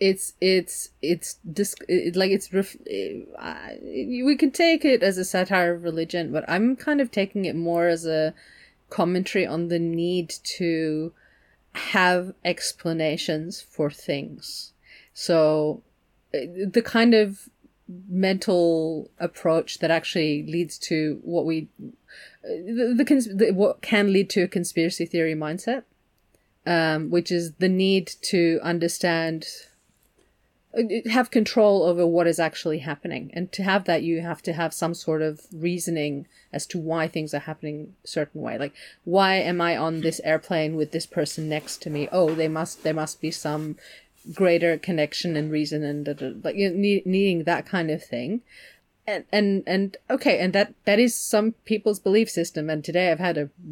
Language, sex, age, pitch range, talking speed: English, female, 30-49, 160-195 Hz, 155 wpm